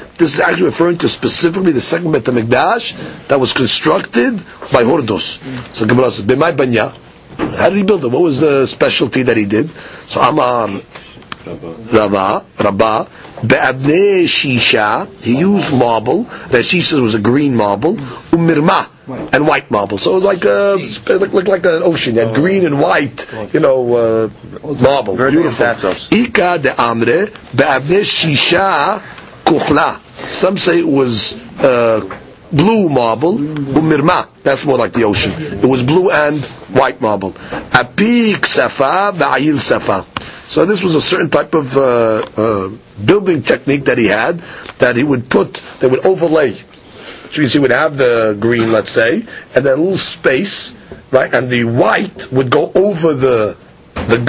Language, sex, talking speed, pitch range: English, male, 150 wpm, 120-170 Hz